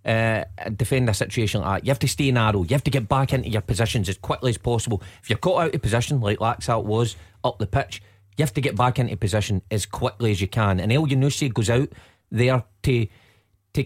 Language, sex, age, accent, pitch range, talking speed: English, male, 30-49, British, 105-130 Hz, 240 wpm